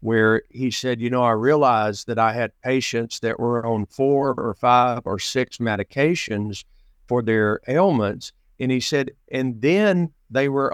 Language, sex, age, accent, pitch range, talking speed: English, male, 50-69, American, 110-135 Hz, 170 wpm